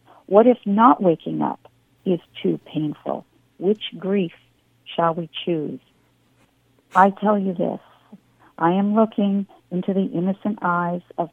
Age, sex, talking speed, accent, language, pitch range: 50-69, female, 130 wpm, American, English, 150-185 Hz